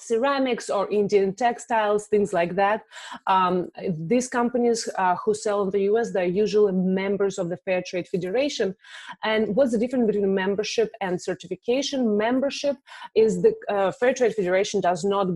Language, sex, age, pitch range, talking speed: English, female, 20-39, 180-225 Hz, 160 wpm